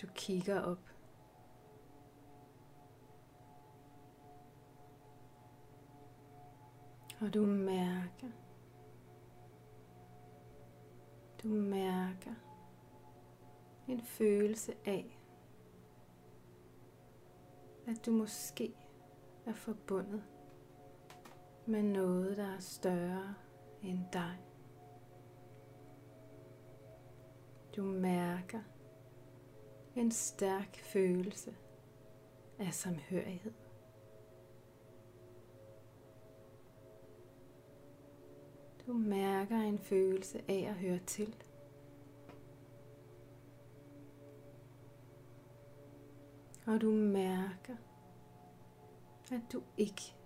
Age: 30-49